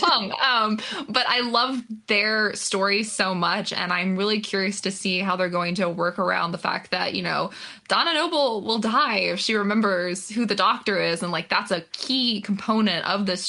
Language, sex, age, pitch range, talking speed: English, female, 20-39, 180-220 Hz, 200 wpm